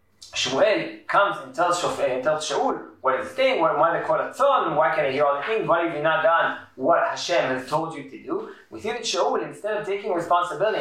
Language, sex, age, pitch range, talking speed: English, male, 20-39, 160-220 Hz, 220 wpm